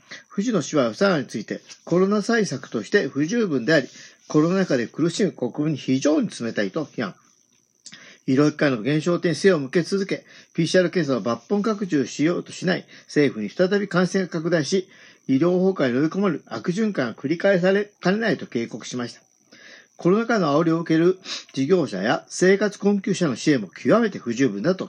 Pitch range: 135-190 Hz